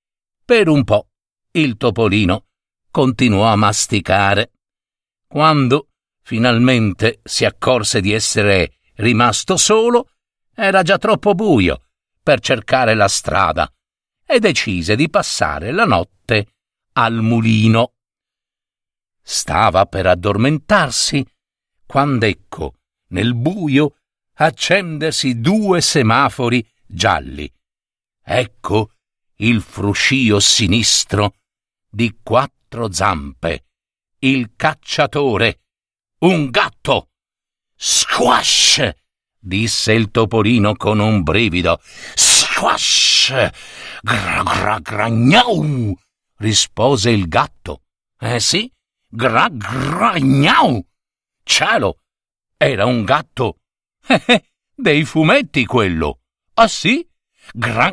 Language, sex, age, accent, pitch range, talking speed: Italian, male, 50-69, native, 100-140 Hz, 85 wpm